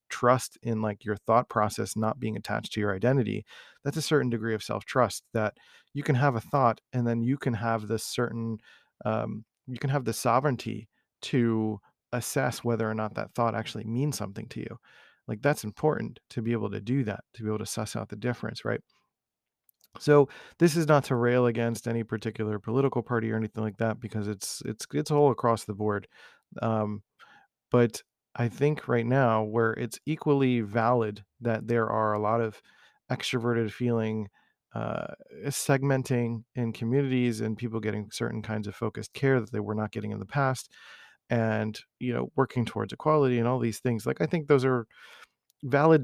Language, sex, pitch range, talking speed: English, male, 110-130 Hz, 190 wpm